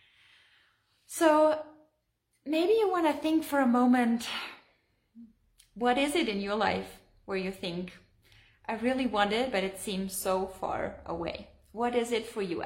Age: 20-39